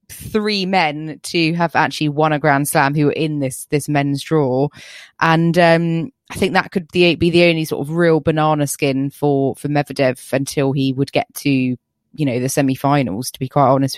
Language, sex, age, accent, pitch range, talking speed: English, female, 20-39, British, 140-180 Hz, 200 wpm